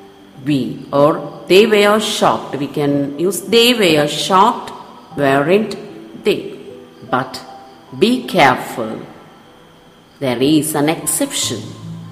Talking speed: 100 wpm